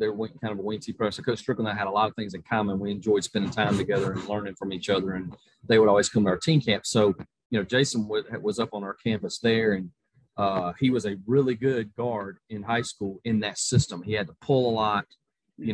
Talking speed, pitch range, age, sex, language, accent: 260 wpm, 100-120 Hz, 30-49, male, English, American